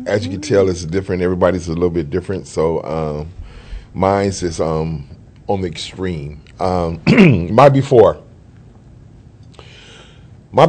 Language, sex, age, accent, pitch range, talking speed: English, male, 30-49, American, 90-115 Hz, 130 wpm